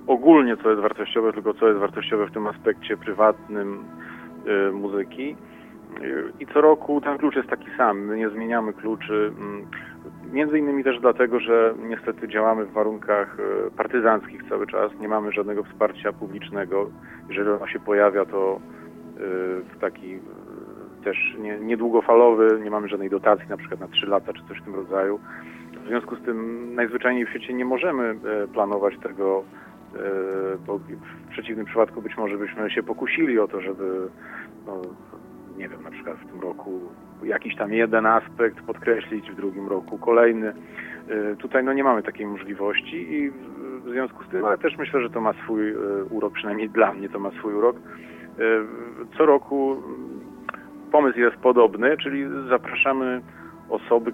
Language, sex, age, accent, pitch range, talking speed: Polish, male, 40-59, native, 100-120 Hz, 150 wpm